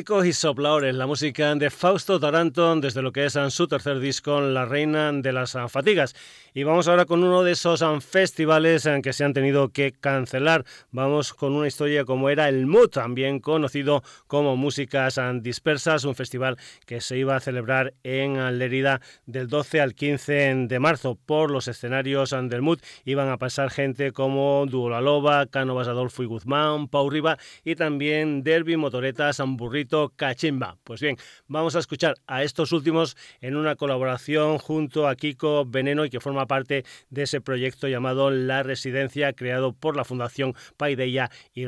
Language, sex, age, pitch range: Spanish, male, 40-59, 130-150 Hz